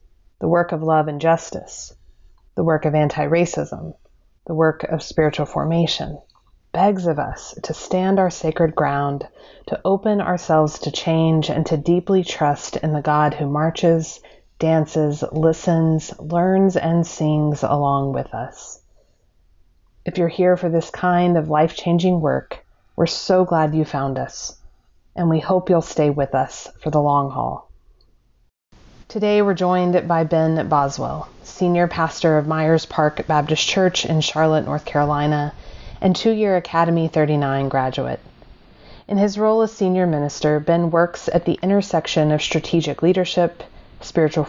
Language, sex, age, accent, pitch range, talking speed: English, female, 30-49, American, 150-175 Hz, 145 wpm